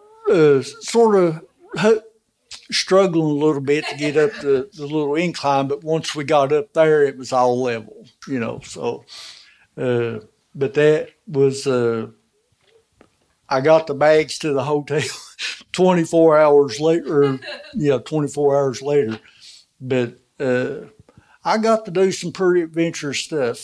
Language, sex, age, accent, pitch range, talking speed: English, male, 60-79, American, 125-155 Hz, 145 wpm